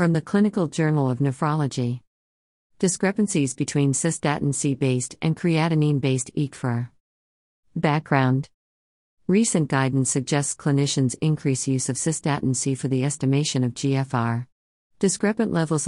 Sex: female